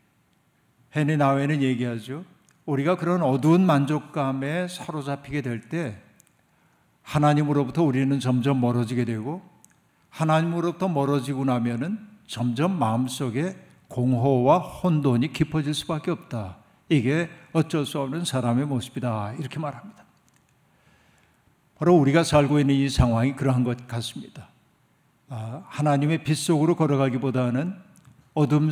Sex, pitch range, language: male, 130-160 Hz, Korean